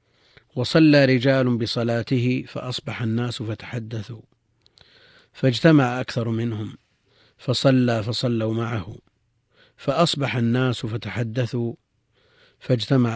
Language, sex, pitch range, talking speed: Arabic, male, 115-130 Hz, 75 wpm